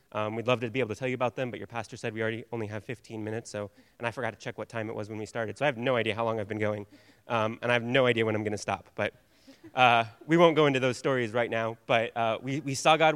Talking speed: 325 wpm